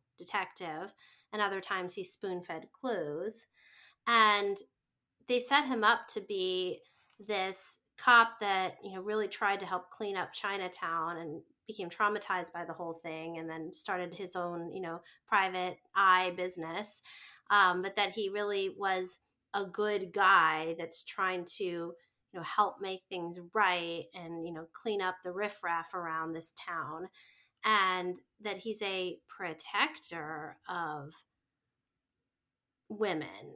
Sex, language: female, English